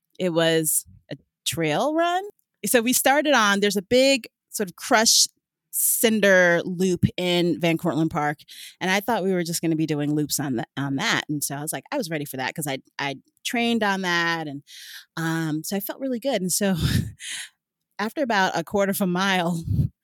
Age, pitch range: 30-49, 175-260 Hz